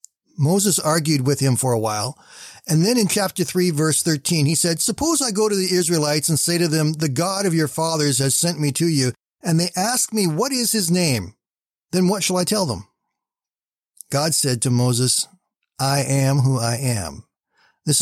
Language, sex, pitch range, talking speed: English, male, 140-185 Hz, 200 wpm